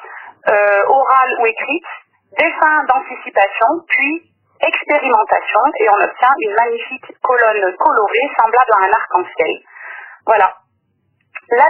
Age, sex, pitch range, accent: 30-49, female, 220-315 Hz, French